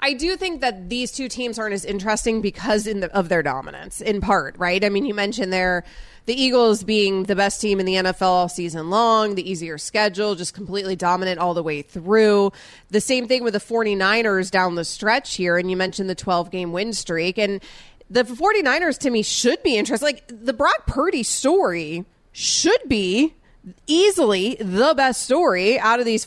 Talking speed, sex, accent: 190 wpm, female, American